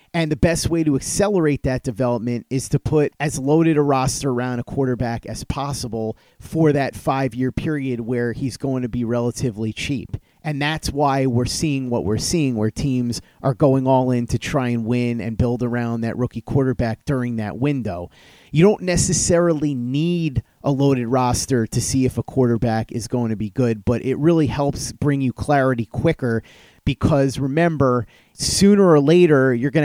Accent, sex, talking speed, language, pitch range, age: American, male, 180 wpm, English, 120-145 Hz, 30-49